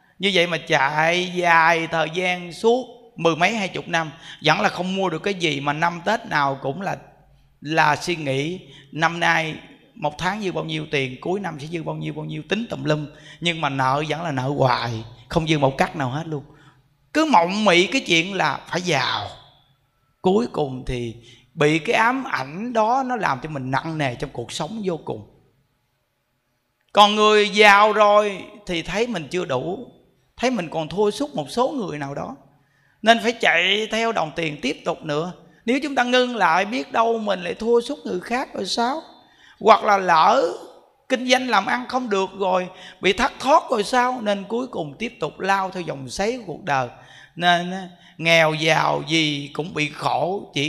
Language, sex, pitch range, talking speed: Vietnamese, male, 150-210 Hz, 200 wpm